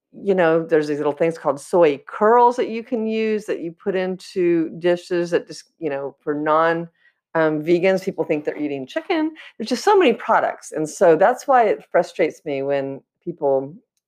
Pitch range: 145-195 Hz